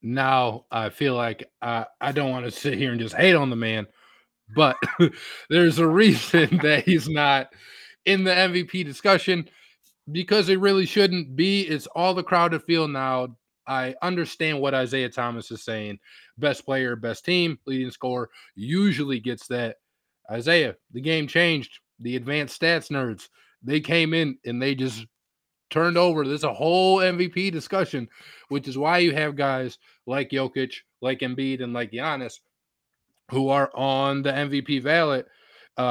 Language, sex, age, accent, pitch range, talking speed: English, male, 20-39, American, 120-165 Hz, 160 wpm